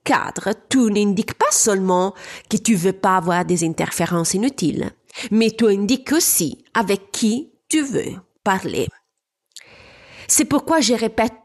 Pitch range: 175-230 Hz